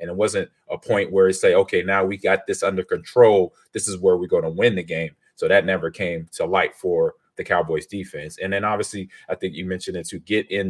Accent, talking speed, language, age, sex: American, 255 wpm, English, 30-49, male